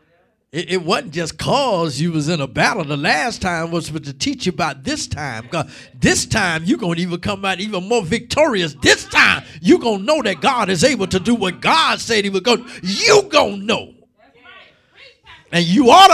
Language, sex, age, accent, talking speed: English, male, 50-69, American, 205 wpm